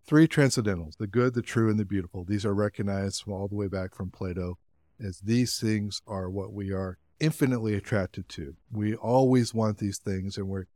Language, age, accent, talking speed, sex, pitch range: English, 50-69, American, 190 wpm, male, 90-110 Hz